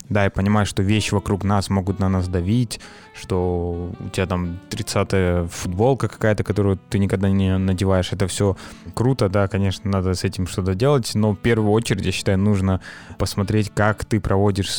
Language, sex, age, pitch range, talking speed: Russian, male, 20-39, 100-110 Hz, 180 wpm